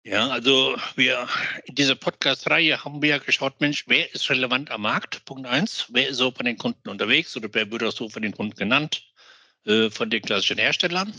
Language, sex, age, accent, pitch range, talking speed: German, male, 60-79, German, 125-170 Hz, 210 wpm